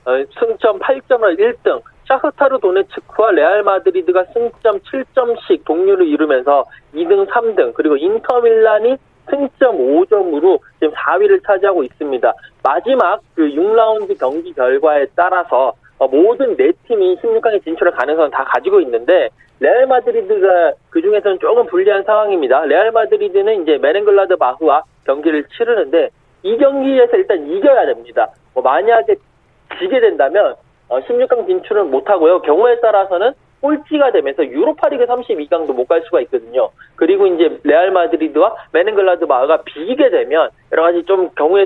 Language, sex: Korean, male